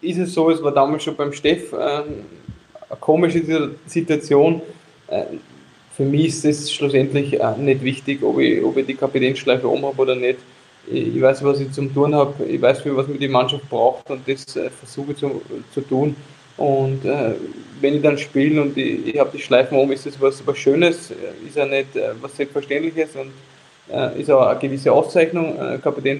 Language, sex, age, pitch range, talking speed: German, male, 20-39, 135-150 Hz, 200 wpm